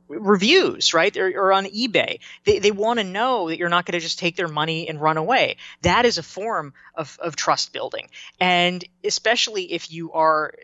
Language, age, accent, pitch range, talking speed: English, 20-39, American, 155-200 Hz, 205 wpm